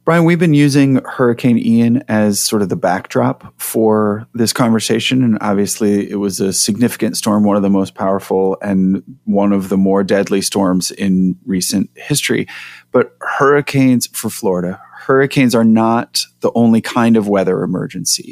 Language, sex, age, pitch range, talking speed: English, male, 30-49, 100-130 Hz, 160 wpm